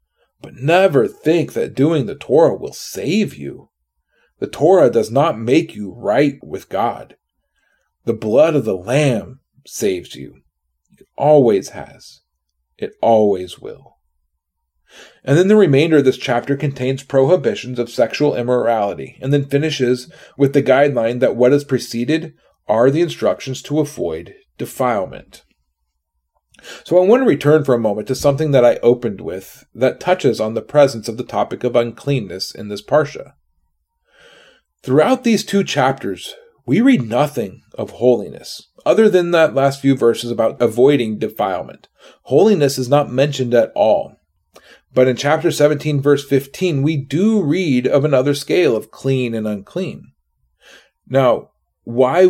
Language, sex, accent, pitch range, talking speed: English, male, American, 115-150 Hz, 150 wpm